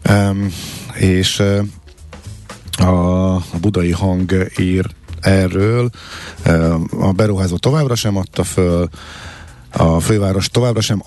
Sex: male